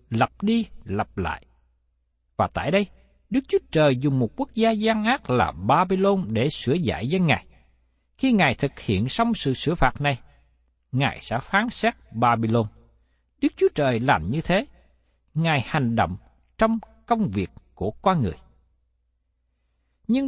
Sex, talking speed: male, 155 wpm